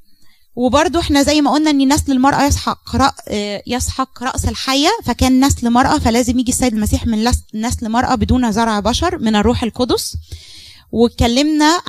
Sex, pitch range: female, 225-290 Hz